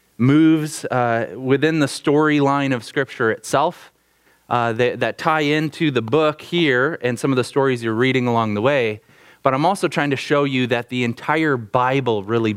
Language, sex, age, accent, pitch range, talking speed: English, male, 30-49, American, 110-135 Hz, 180 wpm